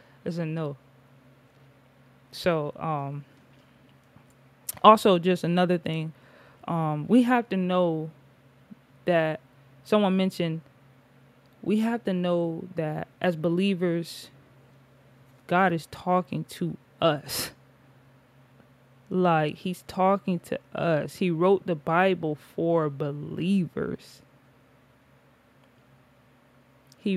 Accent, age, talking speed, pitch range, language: American, 20-39, 90 wpm, 135-190 Hz, English